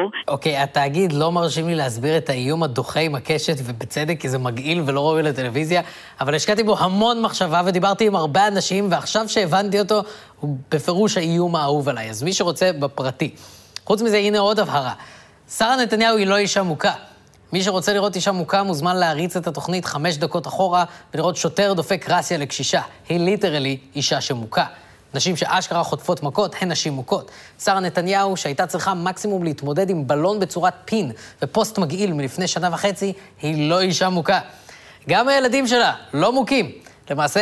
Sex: female